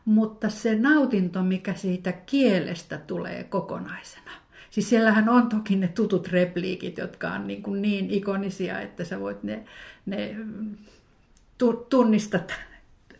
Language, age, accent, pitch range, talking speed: Finnish, 50-69, native, 185-220 Hz, 125 wpm